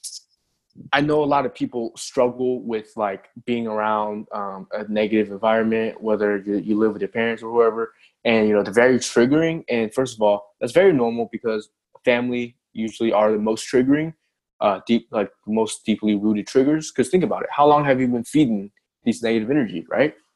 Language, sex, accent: English, male, American